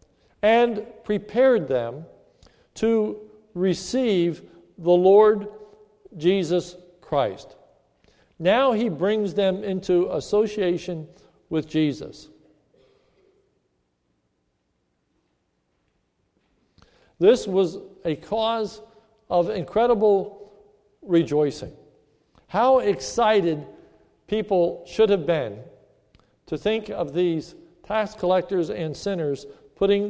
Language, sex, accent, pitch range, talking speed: English, male, American, 155-205 Hz, 80 wpm